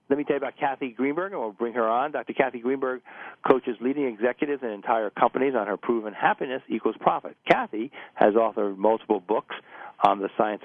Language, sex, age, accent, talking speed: English, male, 50-69, American, 195 wpm